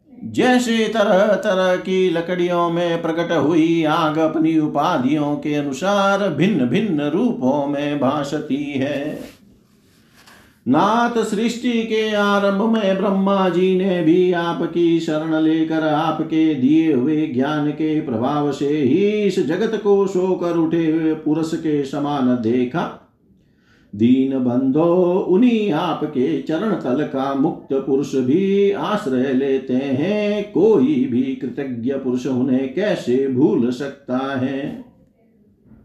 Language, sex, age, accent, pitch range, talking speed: Hindi, male, 50-69, native, 150-200 Hz, 115 wpm